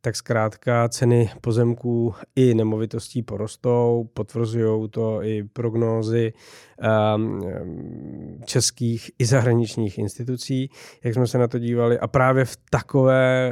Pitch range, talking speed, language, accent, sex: 105-120 Hz, 110 wpm, Czech, native, male